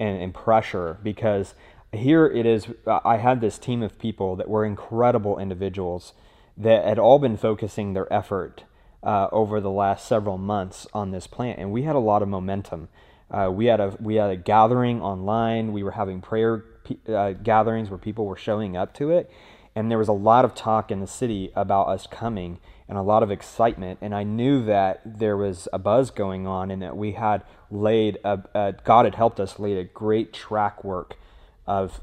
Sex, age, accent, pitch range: male, 20-39, American, 95-115 Hz